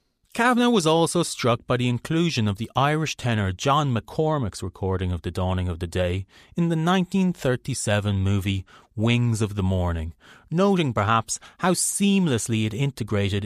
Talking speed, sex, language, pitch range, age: 150 wpm, male, English, 100-165 Hz, 30-49